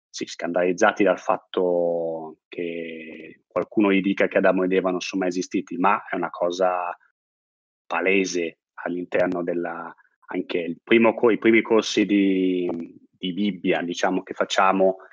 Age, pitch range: 20-39, 85-100 Hz